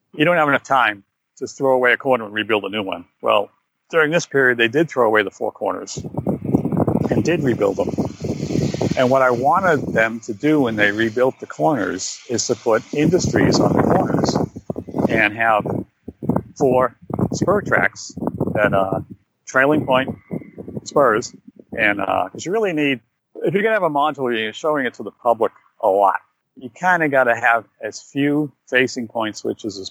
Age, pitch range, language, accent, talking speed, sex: 50-69, 110-145 Hz, English, American, 185 wpm, male